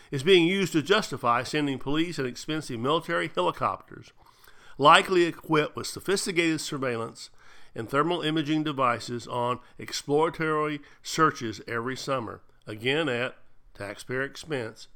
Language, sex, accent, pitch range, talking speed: English, male, American, 115-150 Hz, 115 wpm